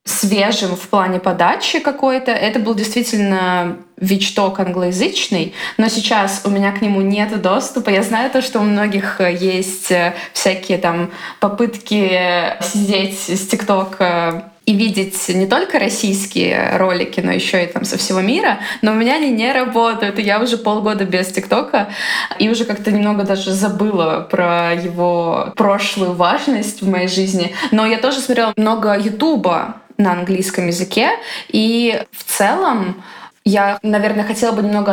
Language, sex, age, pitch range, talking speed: Russian, female, 20-39, 190-235 Hz, 145 wpm